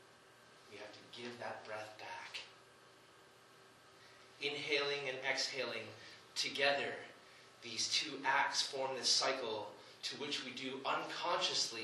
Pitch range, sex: 115-135 Hz, male